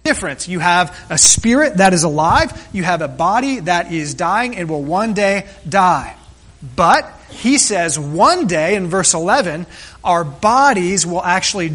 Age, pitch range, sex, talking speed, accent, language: 30-49, 165-215 Hz, male, 165 wpm, American, French